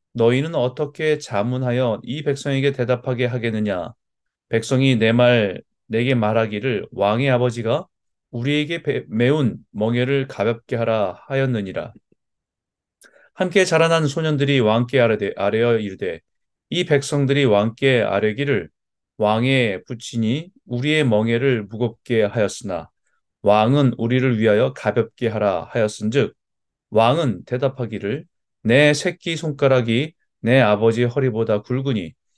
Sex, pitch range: male, 110-140 Hz